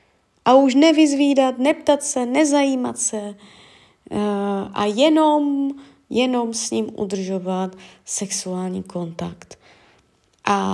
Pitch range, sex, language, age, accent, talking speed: 195-265 Hz, female, Czech, 20-39, native, 95 wpm